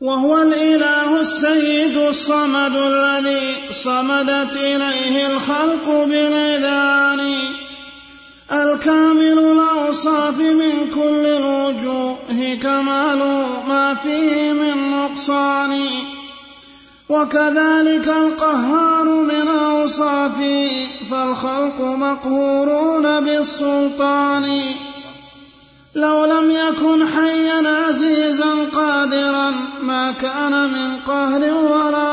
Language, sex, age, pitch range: Arabic, male, 30-49, 275-300 Hz